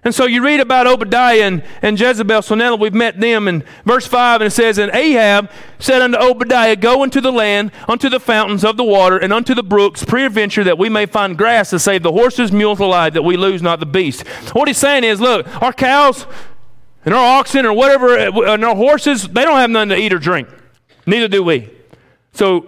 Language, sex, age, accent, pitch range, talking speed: English, male, 40-59, American, 175-245 Hz, 225 wpm